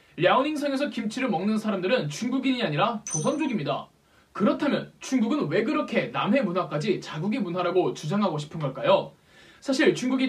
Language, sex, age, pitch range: Korean, male, 20-39, 185-265 Hz